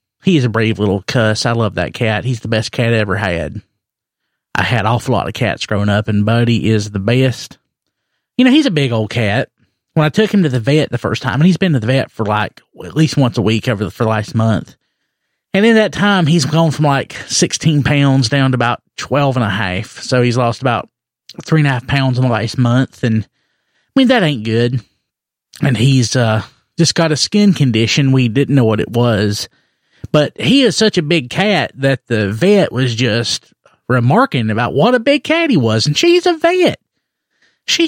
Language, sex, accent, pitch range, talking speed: English, male, American, 110-165 Hz, 225 wpm